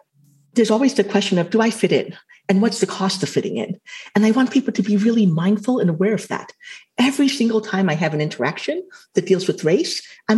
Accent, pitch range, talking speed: American, 185-230 Hz, 230 wpm